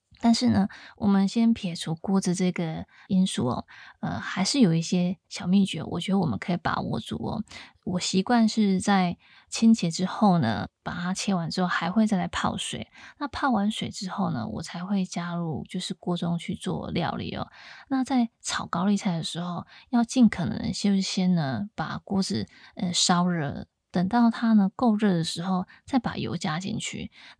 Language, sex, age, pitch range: Chinese, female, 20-39, 180-215 Hz